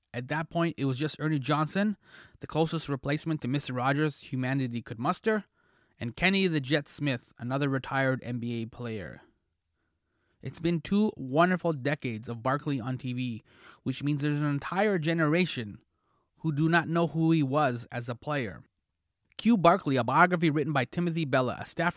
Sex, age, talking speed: male, 30-49, 165 wpm